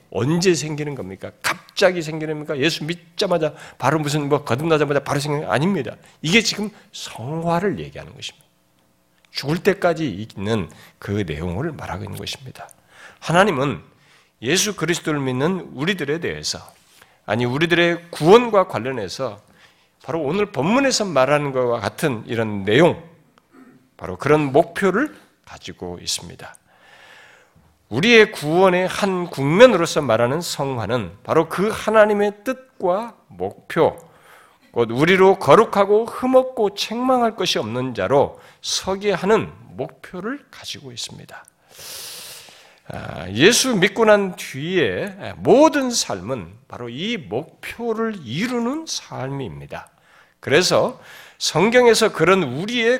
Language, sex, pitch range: Korean, male, 125-210 Hz